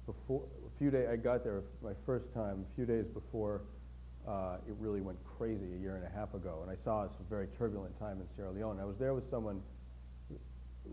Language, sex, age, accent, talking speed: English, male, 40-59, American, 230 wpm